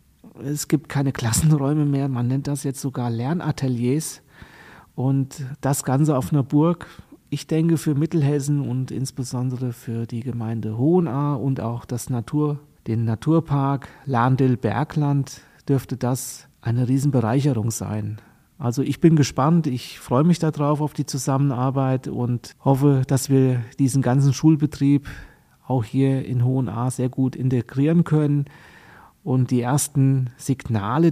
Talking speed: 130 wpm